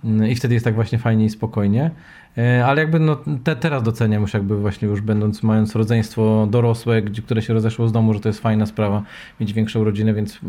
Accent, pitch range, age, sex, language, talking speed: native, 115-130 Hz, 20-39, male, Polish, 205 wpm